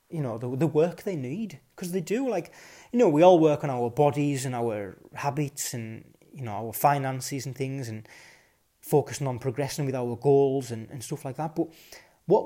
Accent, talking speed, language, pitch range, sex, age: British, 205 wpm, English, 130-165 Hz, male, 20-39